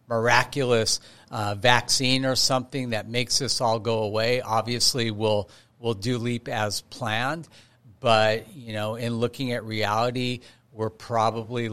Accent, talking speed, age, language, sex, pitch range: American, 140 wpm, 50-69, English, male, 110-125 Hz